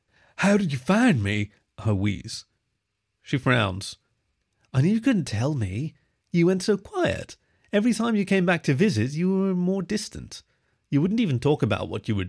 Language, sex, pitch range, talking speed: English, male, 110-185 Hz, 180 wpm